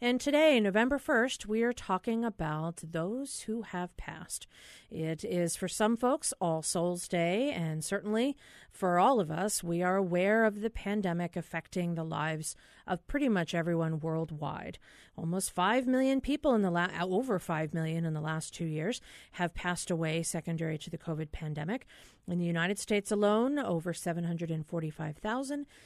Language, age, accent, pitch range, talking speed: English, 40-59, American, 165-220 Hz, 160 wpm